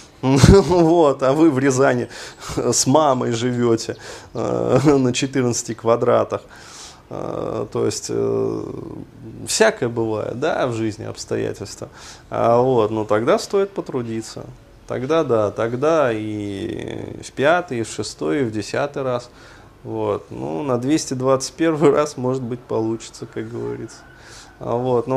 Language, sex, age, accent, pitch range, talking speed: Russian, male, 20-39, native, 110-135 Hz, 125 wpm